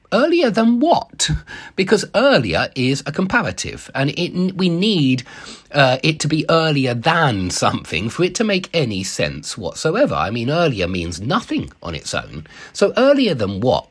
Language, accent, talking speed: English, British, 165 wpm